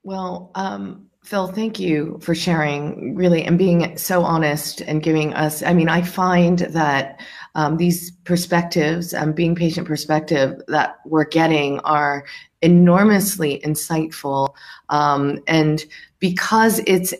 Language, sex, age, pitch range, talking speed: English, female, 30-49, 150-175 Hz, 130 wpm